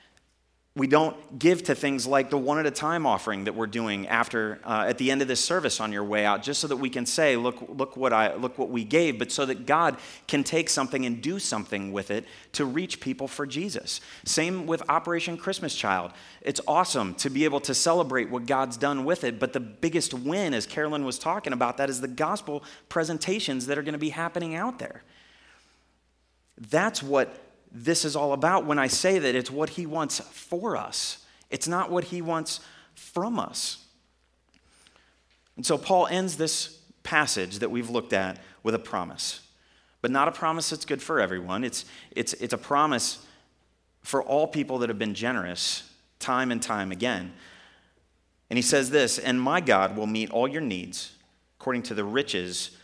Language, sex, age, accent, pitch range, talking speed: English, male, 30-49, American, 110-160 Hz, 195 wpm